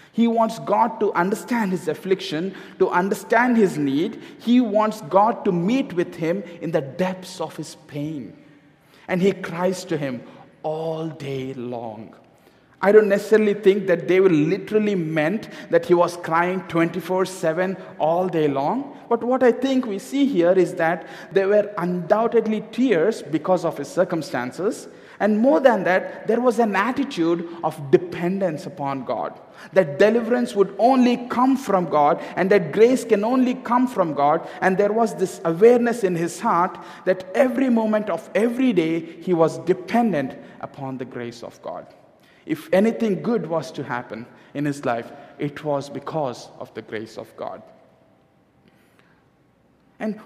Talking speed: 160 wpm